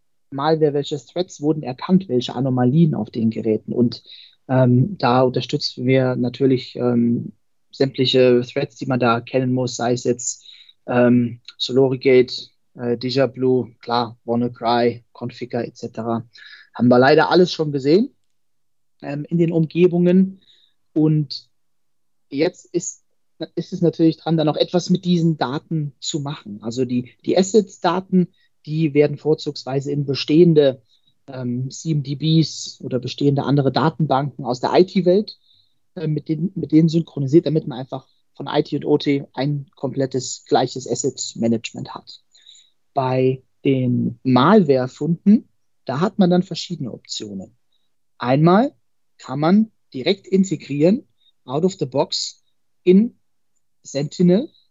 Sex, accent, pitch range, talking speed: male, German, 125-160 Hz, 125 wpm